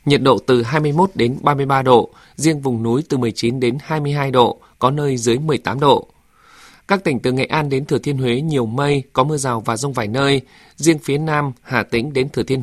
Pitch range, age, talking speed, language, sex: 125-150 Hz, 20-39, 220 wpm, Vietnamese, male